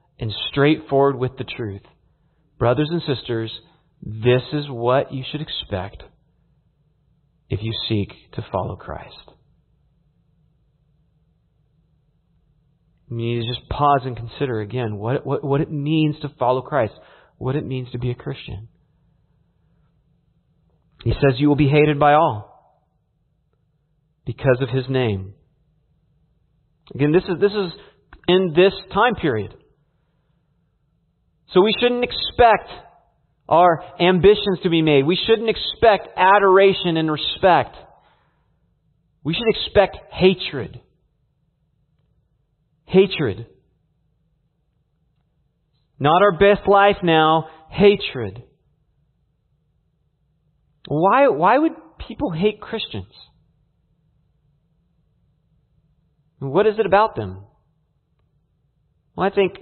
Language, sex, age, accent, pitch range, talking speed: English, male, 40-59, American, 130-180 Hz, 105 wpm